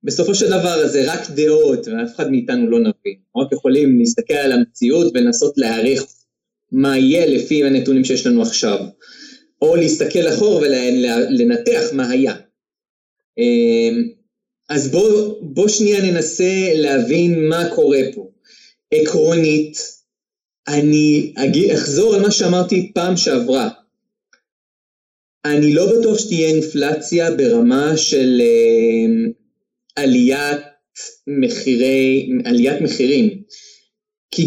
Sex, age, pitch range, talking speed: male, 30-49, 155-235 Hz, 80 wpm